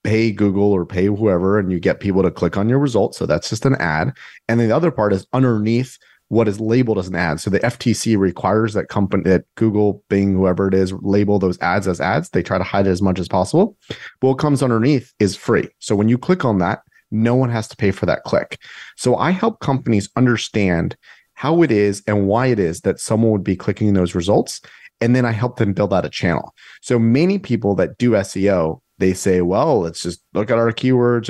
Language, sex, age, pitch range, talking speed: English, male, 30-49, 95-120 Hz, 230 wpm